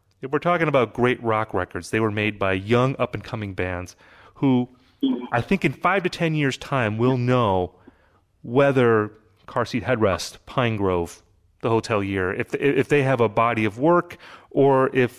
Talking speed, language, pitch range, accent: 170 wpm, English, 100-125 Hz, American